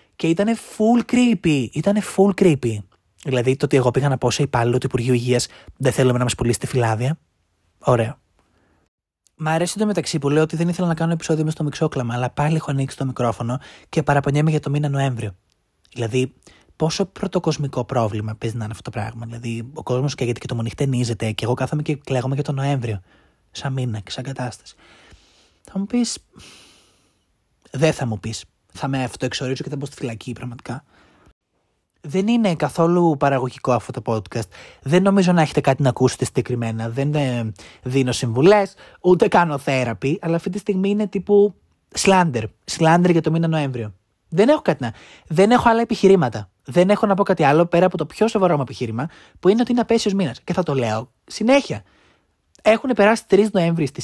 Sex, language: male, Greek